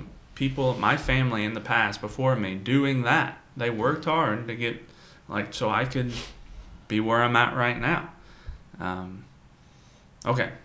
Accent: American